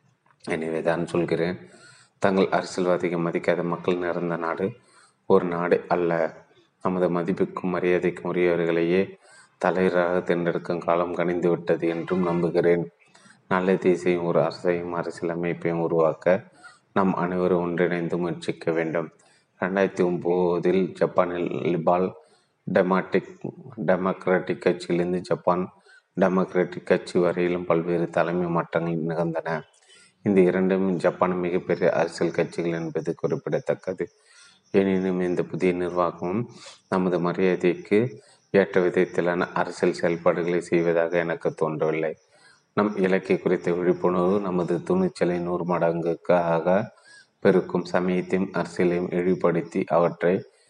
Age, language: 30-49, Tamil